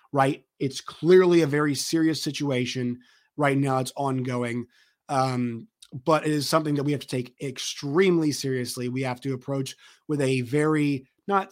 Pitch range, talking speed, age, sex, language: 125-145 Hz, 160 wpm, 30-49, male, English